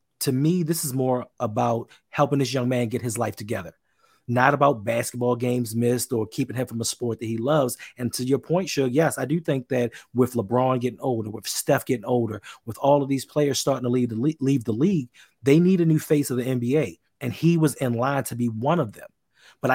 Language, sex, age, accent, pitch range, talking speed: English, male, 30-49, American, 120-145 Hz, 230 wpm